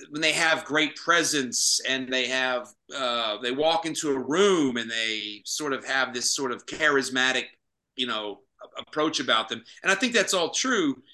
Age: 40-59